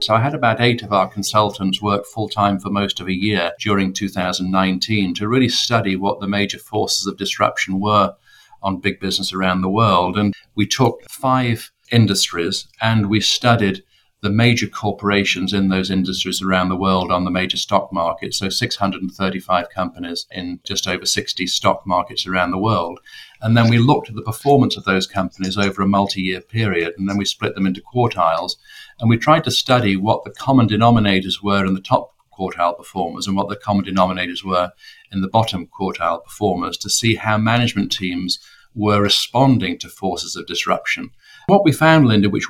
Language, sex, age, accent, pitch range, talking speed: English, male, 50-69, British, 95-115 Hz, 185 wpm